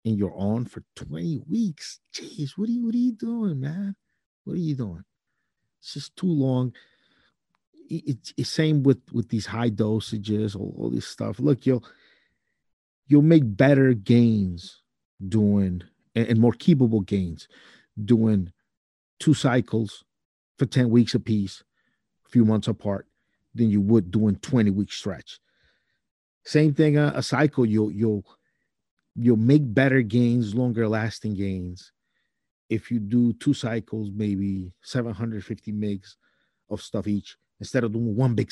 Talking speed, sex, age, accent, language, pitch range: 145 wpm, male, 50-69, American, English, 105-145 Hz